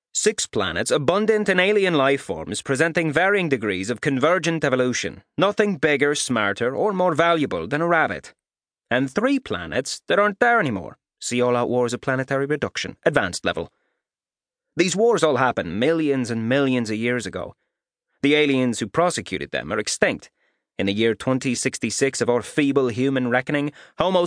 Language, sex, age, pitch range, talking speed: English, male, 30-49, 115-160 Hz, 160 wpm